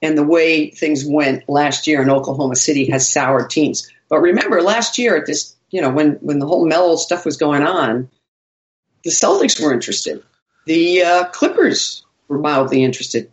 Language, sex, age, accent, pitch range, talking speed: English, female, 50-69, American, 145-190 Hz, 180 wpm